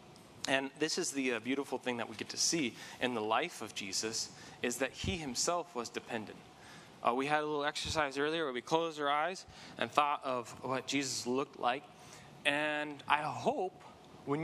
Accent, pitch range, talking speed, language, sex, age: American, 125-155 Hz, 190 wpm, English, male, 20-39